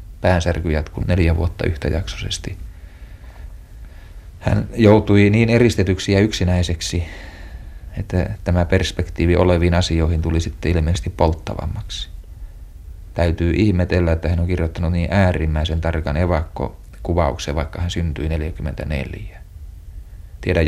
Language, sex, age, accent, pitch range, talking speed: Finnish, male, 30-49, native, 80-100 Hz, 100 wpm